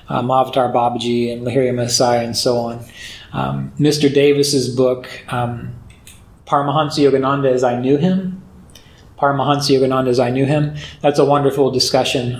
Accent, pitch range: American, 125-145 Hz